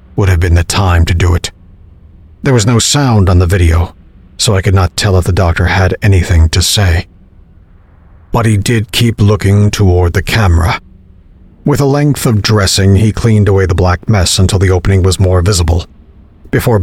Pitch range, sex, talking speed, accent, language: 85-100 Hz, male, 190 wpm, American, English